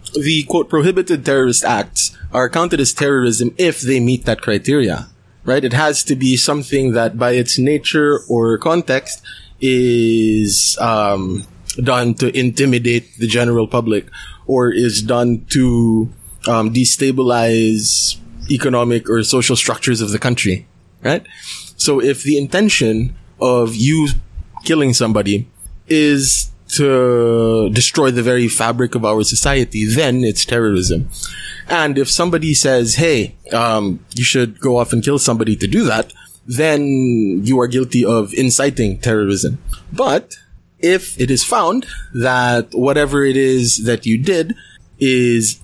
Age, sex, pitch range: 20-39, male, 115-135 Hz